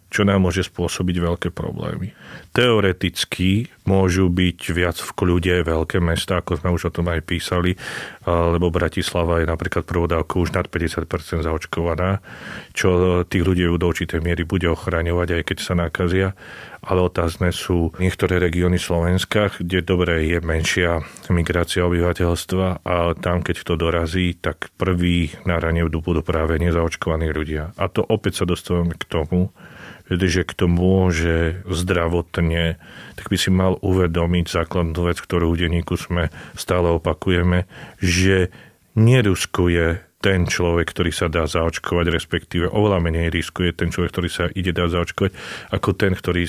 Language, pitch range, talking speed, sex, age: Slovak, 85-95 Hz, 150 wpm, male, 40-59